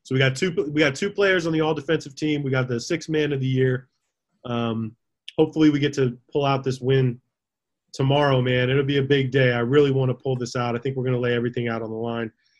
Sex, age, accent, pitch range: male, 20-39, American, 120-140 Hz